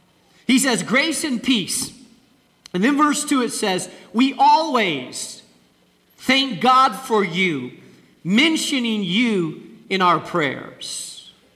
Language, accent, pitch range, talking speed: English, American, 215-285 Hz, 115 wpm